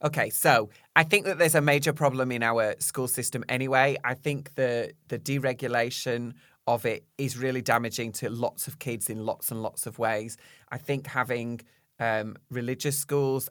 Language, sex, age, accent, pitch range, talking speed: English, male, 20-39, British, 115-145 Hz, 180 wpm